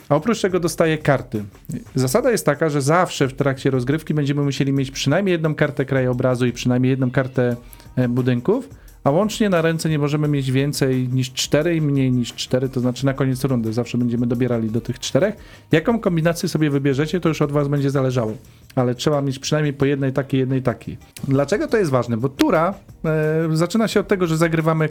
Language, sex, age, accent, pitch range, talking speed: Polish, male, 40-59, native, 130-160 Hz, 200 wpm